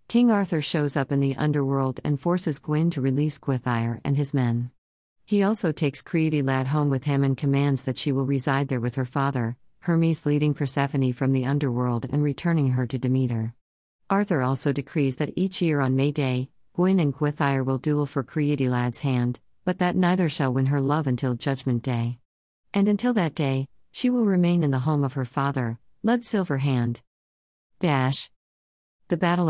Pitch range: 130-160 Hz